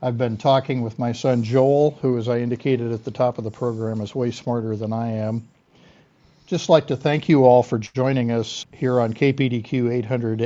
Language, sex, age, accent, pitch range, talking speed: English, male, 60-79, American, 120-135 Hz, 205 wpm